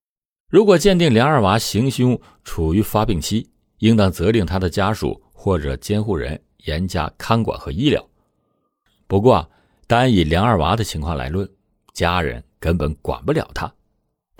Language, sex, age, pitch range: Chinese, male, 50-69, 80-110 Hz